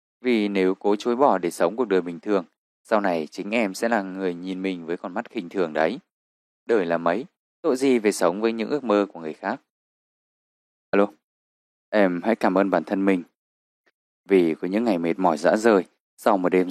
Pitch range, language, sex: 90-110 Hz, Vietnamese, male